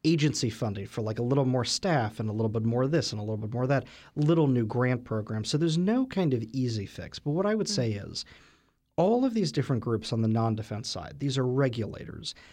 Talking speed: 245 wpm